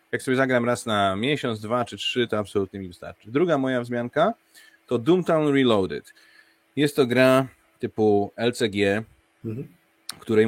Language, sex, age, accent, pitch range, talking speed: Polish, male, 30-49, native, 95-120 Hz, 145 wpm